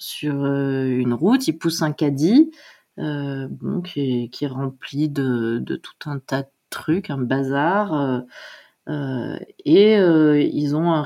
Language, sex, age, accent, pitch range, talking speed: French, female, 30-49, French, 135-175 Hz, 170 wpm